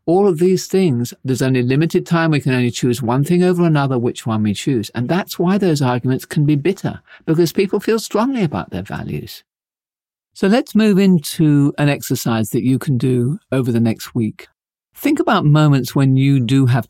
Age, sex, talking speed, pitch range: 50-69, male, 200 wpm, 120-170 Hz